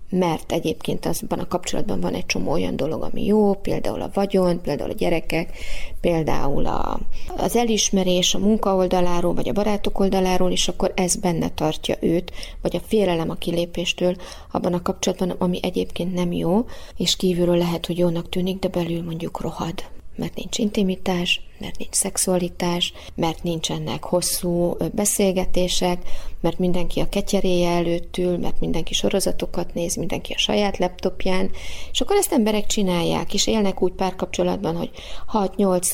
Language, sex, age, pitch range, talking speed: Hungarian, female, 30-49, 175-205 Hz, 150 wpm